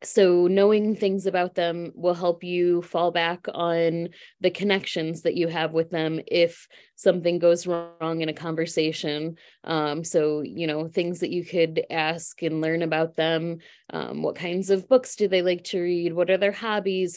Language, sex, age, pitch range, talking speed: English, female, 20-39, 165-185 Hz, 180 wpm